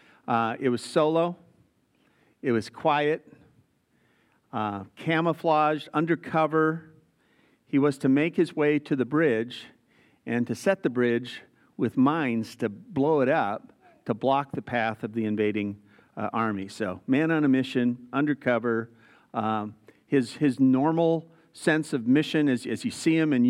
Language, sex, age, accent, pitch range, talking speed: English, male, 50-69, American, 125-160 Hz, 150 wpm